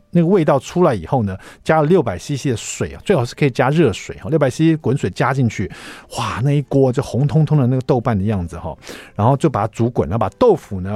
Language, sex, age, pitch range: Chinese, male, 50-69, 110-155 Hz